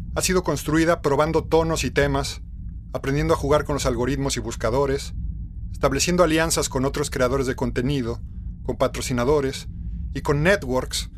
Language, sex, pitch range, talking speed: Spanish, male, 110-160 Hz, 145 wpm